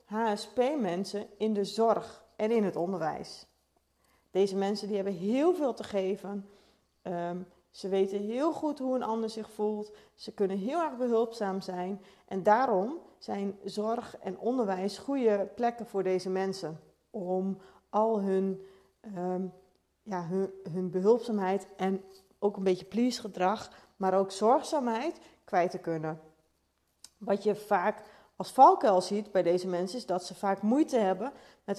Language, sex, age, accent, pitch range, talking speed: Dutch, female, 40-59, Dutch, 190-240 Hz, 140 wpm